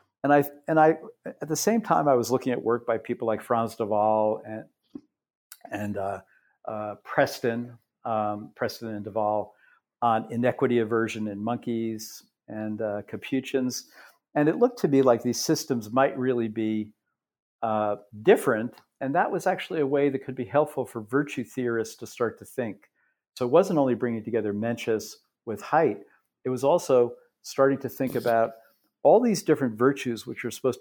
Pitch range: 110-135 Hz